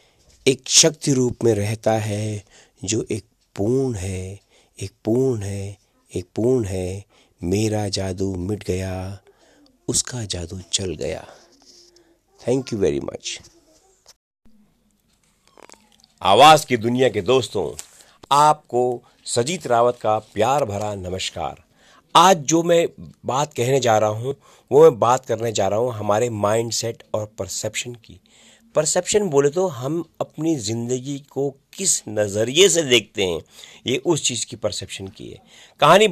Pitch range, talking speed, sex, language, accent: 110-155 Hz, 135 wpm, male, Hindi, native